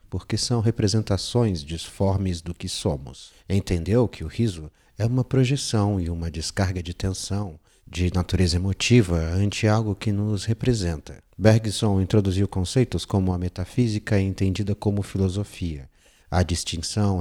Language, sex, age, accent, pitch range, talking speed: Portuguese, male, 50-69, Brazilian, 85-105 Hz, 135 wpm